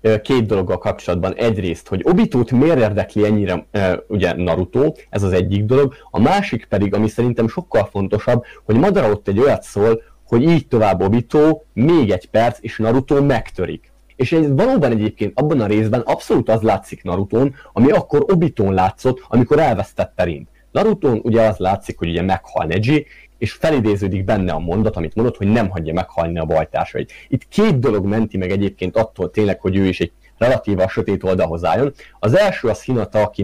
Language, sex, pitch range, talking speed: Hungarian, male, 95-115 Hz, 180 wpm